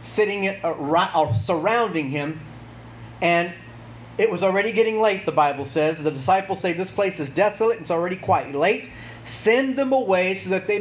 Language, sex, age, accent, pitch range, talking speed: English, male, 30-49, American, 155-205 Hz, 170 wpm